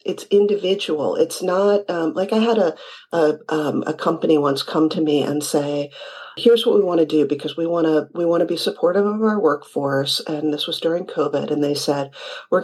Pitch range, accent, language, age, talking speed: 155-205 Hz, American, English, 40-59, 210 wpm